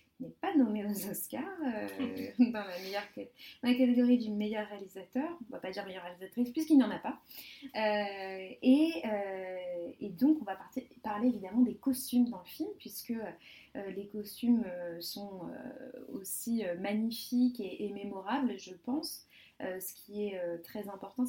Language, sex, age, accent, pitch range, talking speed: French, female, 20-39, French, 200-260 Hz, 170 wpm